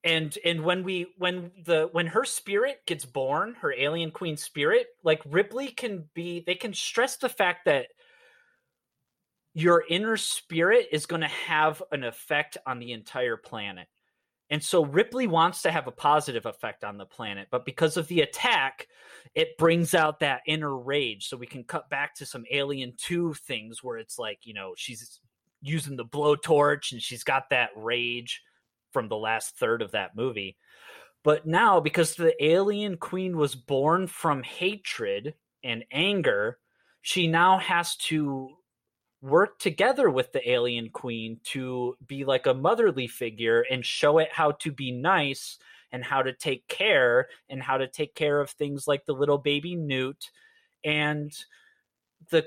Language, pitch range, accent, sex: English, 140-185 Hz, American, male